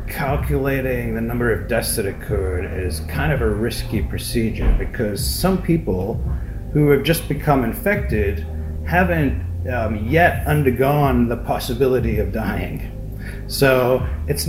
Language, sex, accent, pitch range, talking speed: English, male, American, 90-130 Hz, 130 wpm